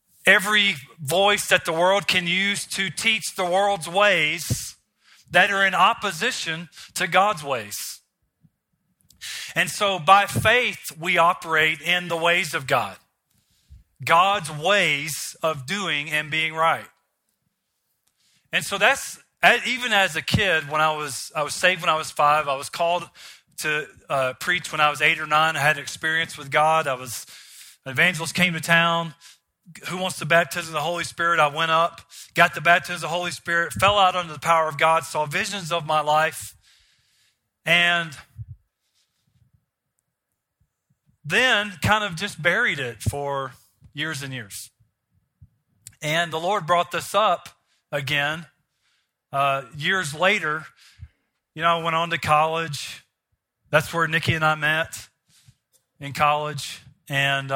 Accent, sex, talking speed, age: American, male, 150 wpm, 40-59